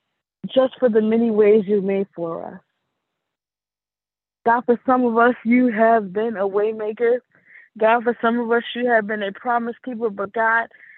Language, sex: English, female